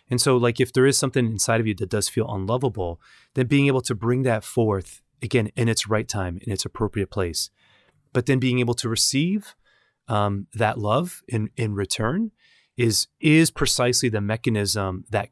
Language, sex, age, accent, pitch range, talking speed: English, male, 30-49, American, 95-125 Hz, 190 wpm